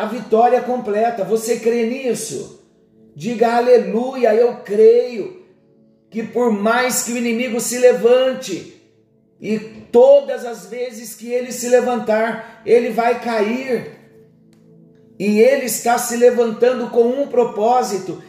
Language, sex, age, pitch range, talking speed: Portuguese, male, 50-69, 215-245 Hz, 120 wpm